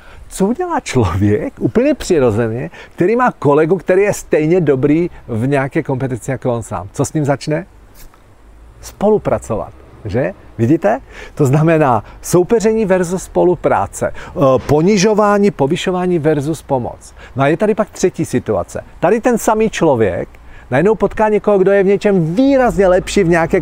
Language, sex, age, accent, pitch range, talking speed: Czech, male, 40-59, native, 115-175 Hz, 145 wpm